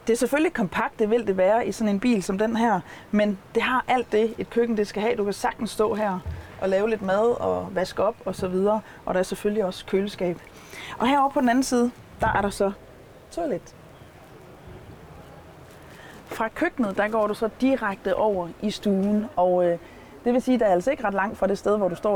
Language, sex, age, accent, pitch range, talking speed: Danish, female, 30-49, native, 180-220 Hz, 230 wpm